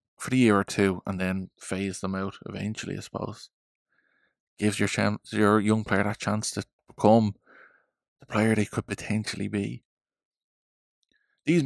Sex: male